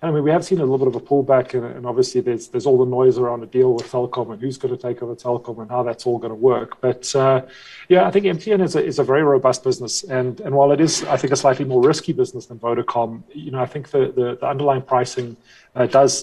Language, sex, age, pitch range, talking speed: English, male, 30-49, 125-150 Hz, 280 wpm